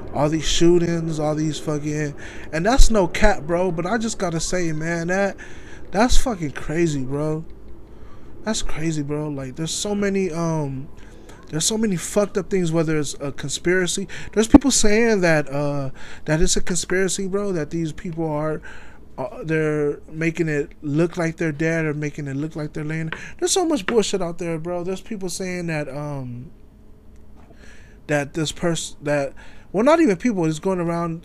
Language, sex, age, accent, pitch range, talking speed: English, male, 20-39, American, 150-180 Hz, 175 wpm